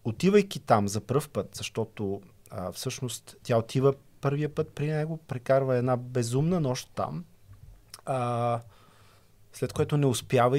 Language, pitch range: Bulgarian, 110-145 Hz